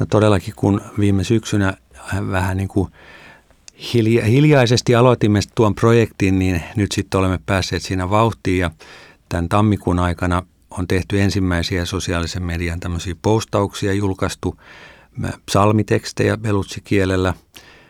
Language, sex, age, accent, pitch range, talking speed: Finnish, male, 50-69, native, 90-105 Hz, 105 wpm